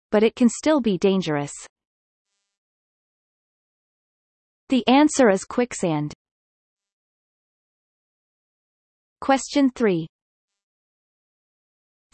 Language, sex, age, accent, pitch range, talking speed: English, female, 30-49, American, 195-245 Hz, 60 wpm